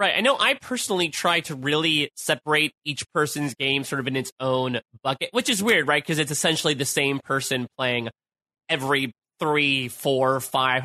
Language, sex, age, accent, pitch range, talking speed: English, male, 30-49, American, 130-165 Hz, 185 wpm